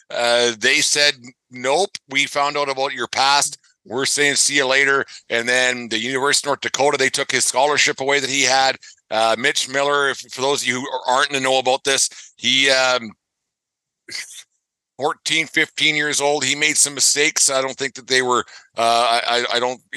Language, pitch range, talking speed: English, 120-135 Hz, 190 wpm